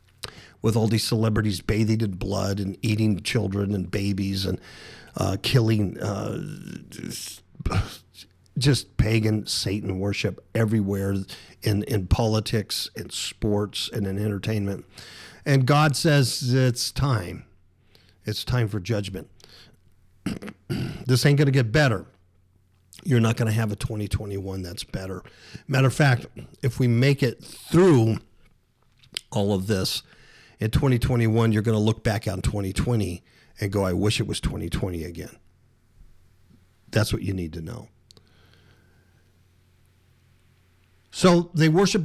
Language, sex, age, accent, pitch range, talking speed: English, male, 50-69, American, 95-120 Hz, 125 wpm